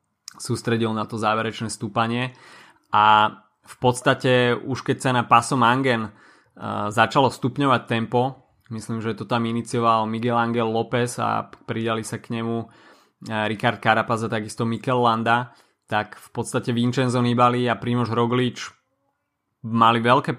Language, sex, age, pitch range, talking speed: Slovak, male, 20-39, 110-120 Hz, 135 wpm